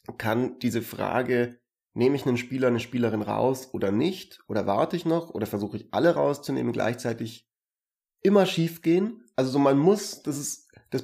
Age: 30-49